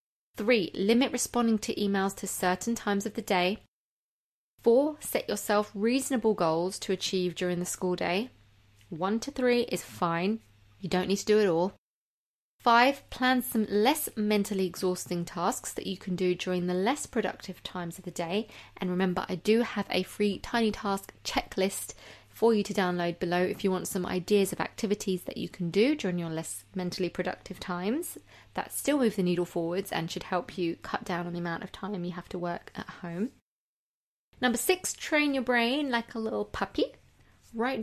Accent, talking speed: British, 185 wpm